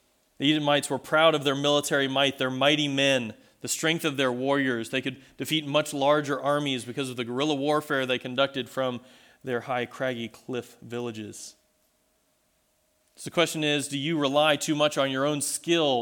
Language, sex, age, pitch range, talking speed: English, male, 30-49, 125-150 Hz, 180 wpm